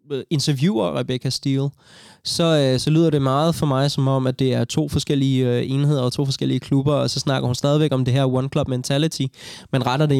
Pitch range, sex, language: 125-145 Hz, male, Danish